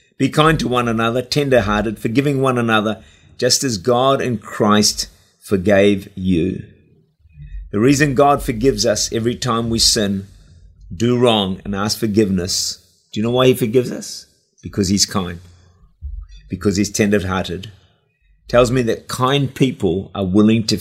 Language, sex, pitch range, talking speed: English, male, 90-120 Hz, 145 wpm